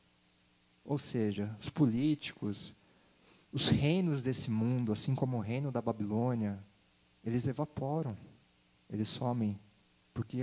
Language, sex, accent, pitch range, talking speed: Portuguese, male, Brazilian, 100-145 Hz, 110 wpm